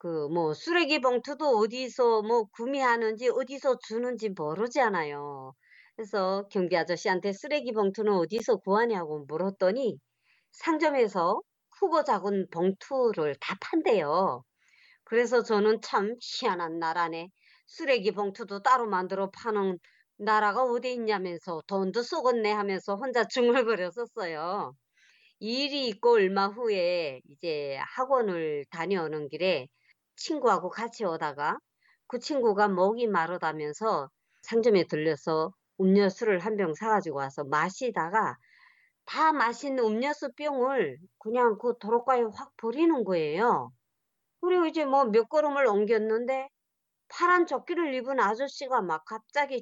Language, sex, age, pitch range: Korean, male, 40-59, 190-270 Hz